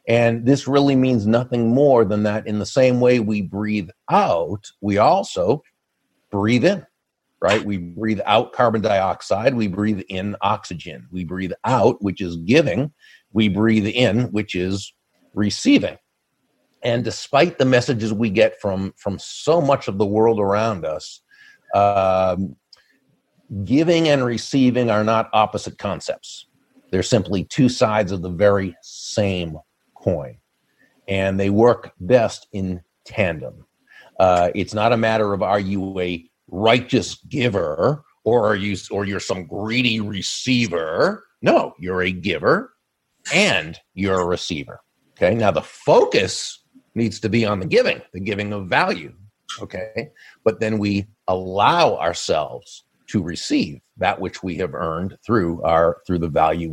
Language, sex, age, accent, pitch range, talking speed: English, male, 50-69, American, 95-115 Hz, 145 wpm